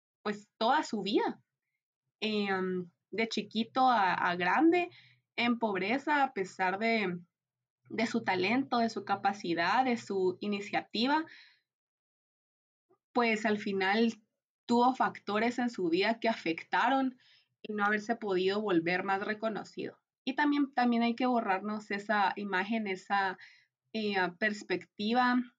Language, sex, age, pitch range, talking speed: Spanish, female, 20-39, 195-245 Hz, 120 wpm